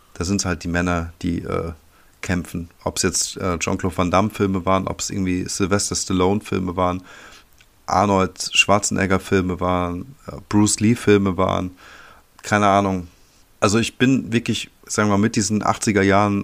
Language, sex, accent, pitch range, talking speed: German, male, German, 90-105 Hz, 155 wpm